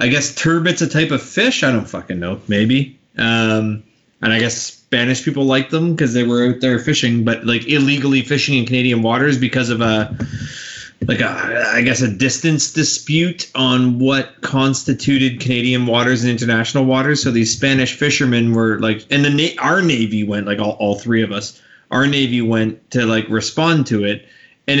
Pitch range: 110-135 Hz